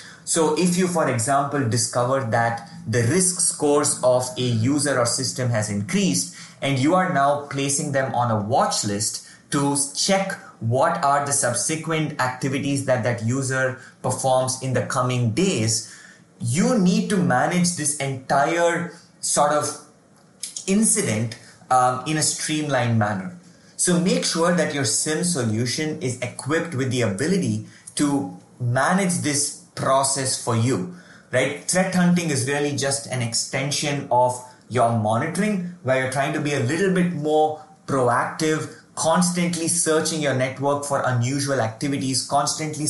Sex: male